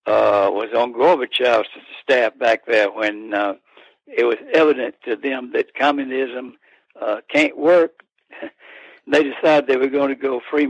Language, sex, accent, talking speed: English, male, American, 150 wpm